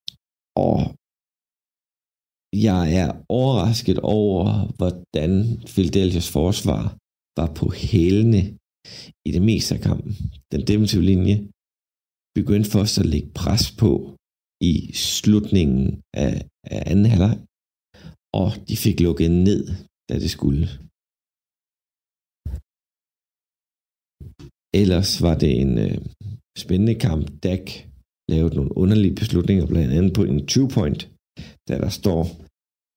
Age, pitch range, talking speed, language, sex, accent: 50-69, 75-105 Hz, 105 wpm, Danish, male, native